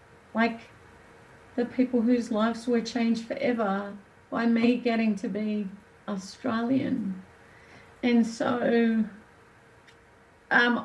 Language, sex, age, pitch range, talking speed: English, female, 40-59, 225-255 Hz, 95 wpm